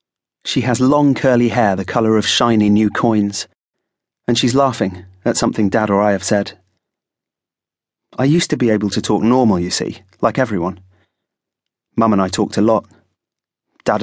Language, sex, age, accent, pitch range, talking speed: English, male, 30-49, British, 100-115 Hz, 170 wpm